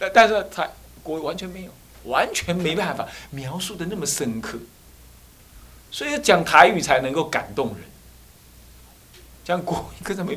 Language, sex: Chinese, male